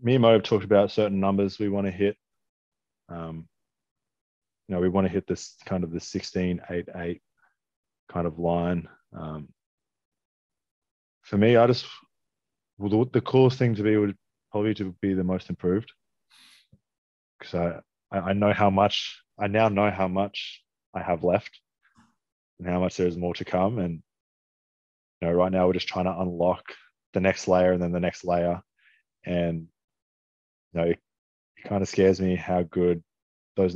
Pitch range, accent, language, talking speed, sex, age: 85-100 Hz, Australian, English, 175 wpm, male, 20-39